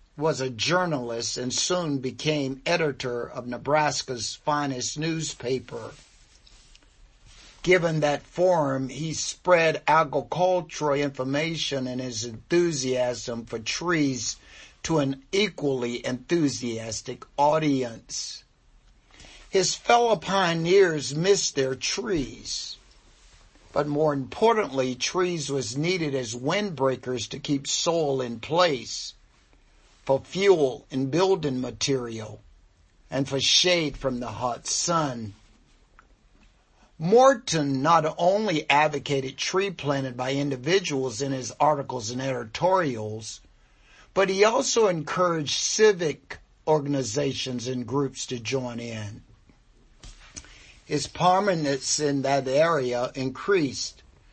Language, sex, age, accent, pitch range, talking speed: English, male, 50-69, American, 125-160 Hz, 100 wpm